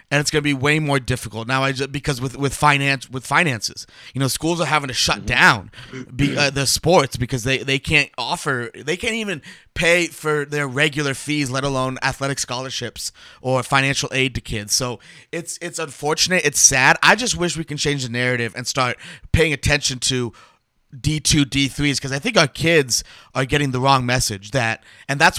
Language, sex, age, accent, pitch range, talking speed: English, male, 30-49, American, 130-165 Hz, 200 wpm